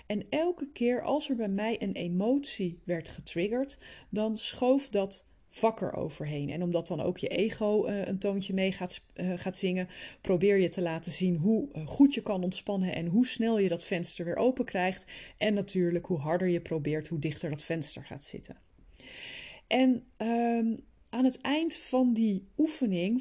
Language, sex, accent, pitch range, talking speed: Dutch, female, Dutch, 185-230 Hz, 180 wpm